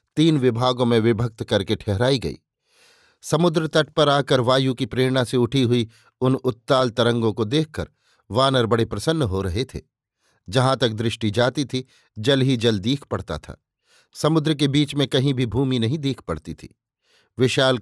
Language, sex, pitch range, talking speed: Hindi, male, 115-135 Hz, 170 wpm